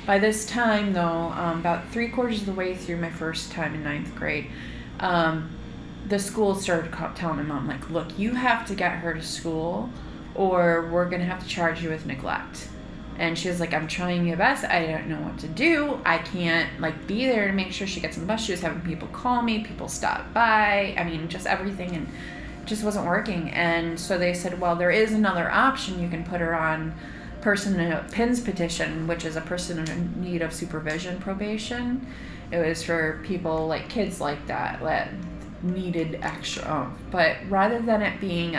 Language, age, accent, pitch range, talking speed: English, 30-49, American, 160-195 Hz, 205 wpm